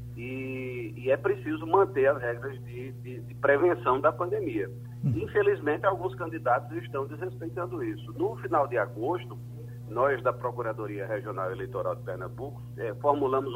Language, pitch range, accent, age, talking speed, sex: Portuguese, 120-135 Hz, Brazilian, 40-59, 135 wpm, male